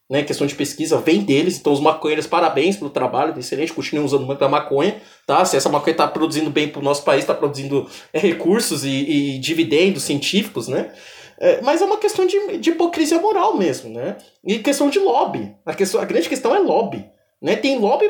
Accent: Brazilian